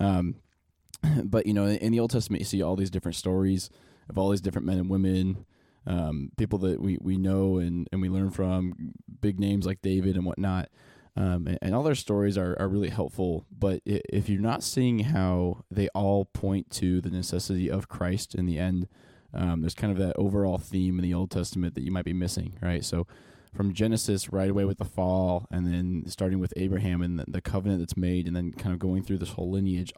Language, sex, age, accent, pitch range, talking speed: English, male, 20-39, American, 90-105 Hz, 220 wpm